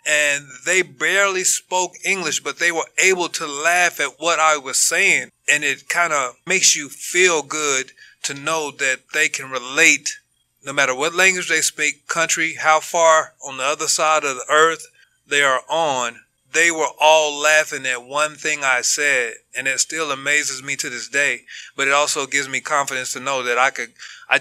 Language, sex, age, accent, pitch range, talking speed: English, male, 30-49, American, 140-175 Hz, 190 wpm